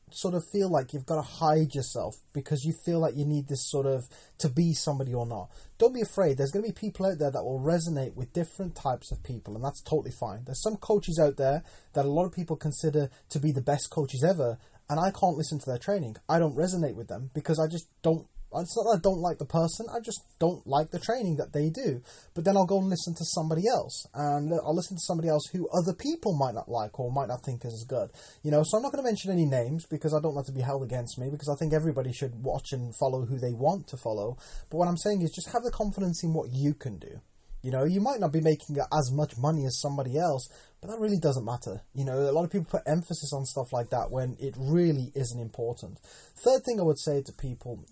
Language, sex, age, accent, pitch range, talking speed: English, male, 20-39, British, 135-175 Hz, 260 wpm